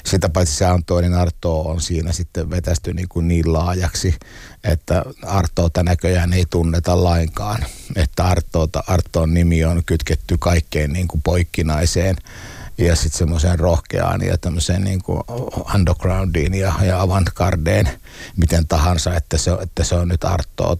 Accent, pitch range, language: native, 85-95 Hz, Finnish